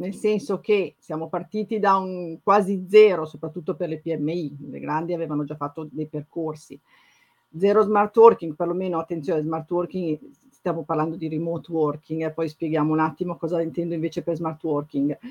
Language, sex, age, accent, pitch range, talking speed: Italian, female, 50-69, native, 170-230 Hz, 170 wpm